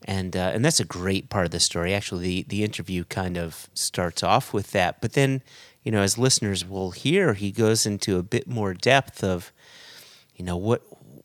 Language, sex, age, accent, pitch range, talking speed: English, male, 30-49, American, 95-125 Hz, 210 wpm